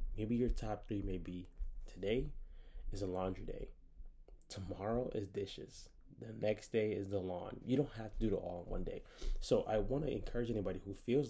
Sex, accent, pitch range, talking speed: male, American, 95-110 Hz, 200 wpm